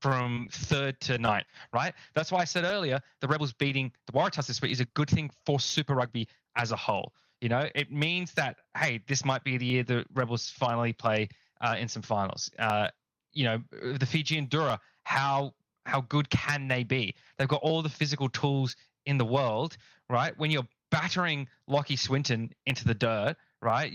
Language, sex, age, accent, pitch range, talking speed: English, male, 20-39, Australian, 125-150 Hz, 195 wpm